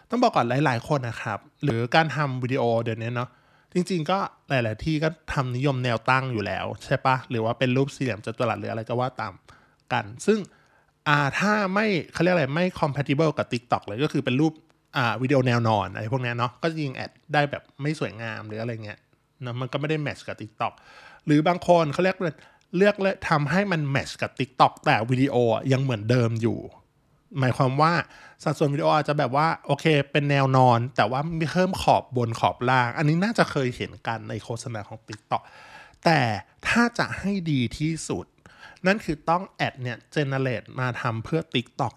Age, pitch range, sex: 20-39, 120-155 Hz, male